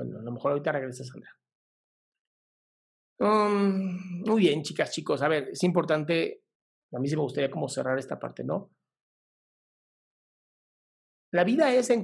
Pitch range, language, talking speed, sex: 145-195 Hz, Spanish, 150 wpm, male